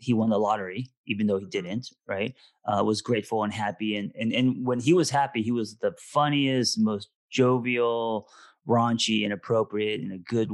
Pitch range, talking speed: 105-125 Hz, 180 wpm